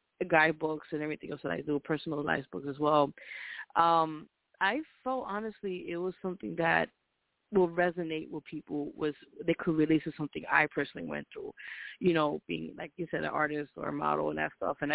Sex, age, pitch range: female, 20-39, 150-175 Hz